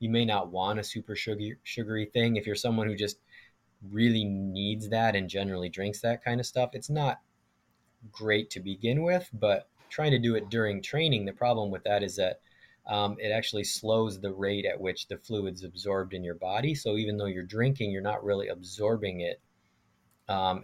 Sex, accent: male, American